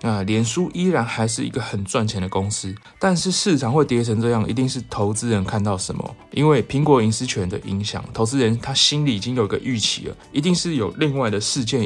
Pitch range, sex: 100-130 Hz, male